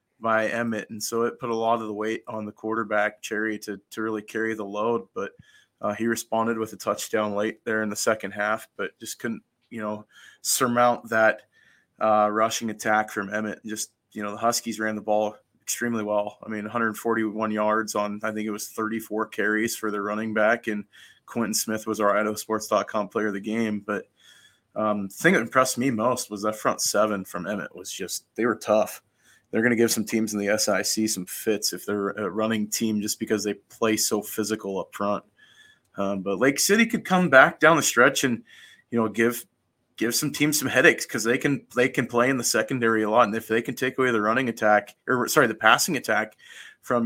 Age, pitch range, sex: 20-39, 105-120 Hz, male